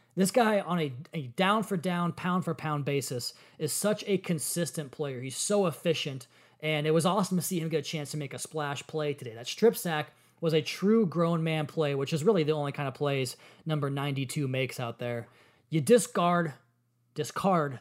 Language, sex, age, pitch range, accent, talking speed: English, male, 20-39, 150-185 Hz, American, 190 wpm